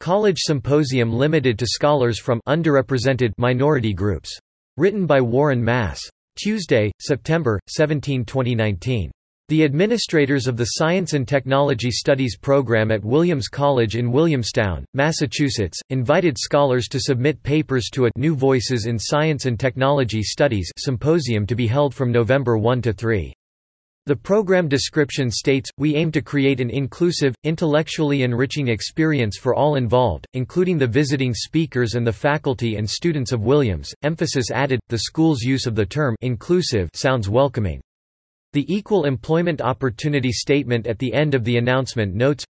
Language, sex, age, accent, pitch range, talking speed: English, male, 40-59, American, 120-145 Hz, 145 wpm